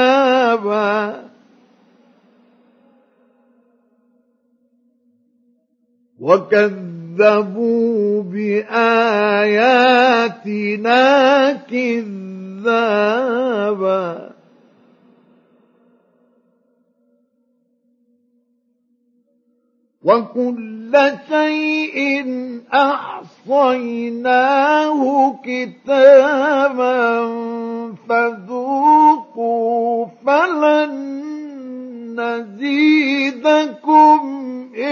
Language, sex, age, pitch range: Arabic, male, 50-69, 230-265 Hz